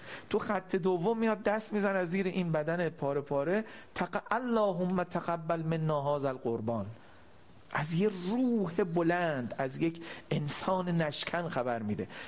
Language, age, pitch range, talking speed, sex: Persian, 40-59, 140-190 Hz, 105 wpm, male